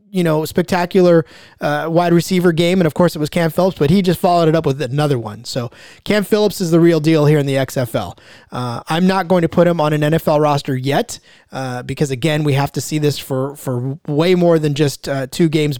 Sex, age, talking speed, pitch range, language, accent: male, 30-49, 240 wpm, 145-185 Hz, English, American